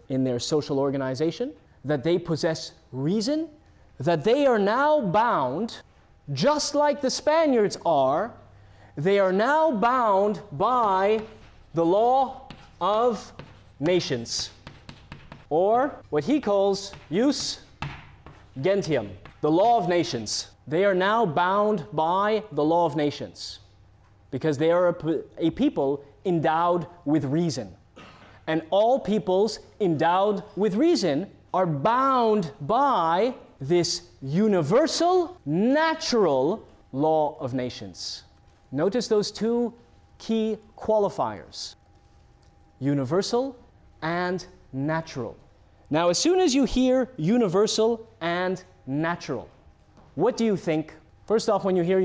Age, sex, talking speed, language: 30-49, male, 110 wpm, English